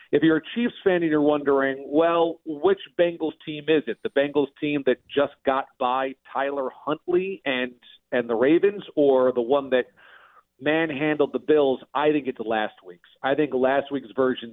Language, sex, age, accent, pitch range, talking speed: English, male, 40-59, American, 125-150 Hz, 180 wpm